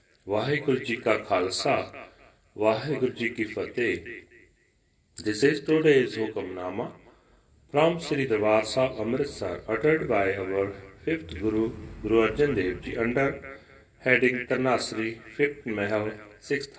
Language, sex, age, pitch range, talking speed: Punjabi, male, 40-59, 105-135 Hz, 115 wpm